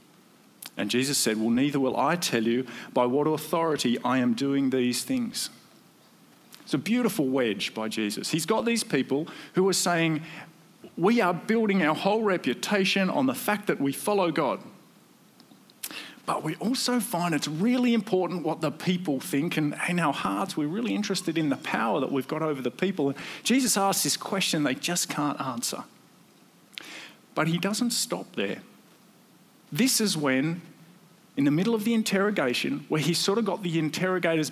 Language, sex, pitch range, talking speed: English, male, 145-210 Hz, 170 wpm